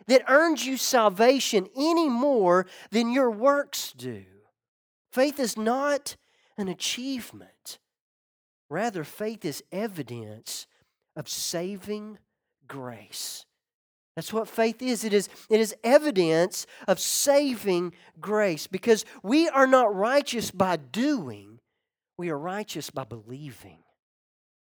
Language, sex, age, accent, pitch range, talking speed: English, male, 40-59, American, 170-260 Hz, 110 wpm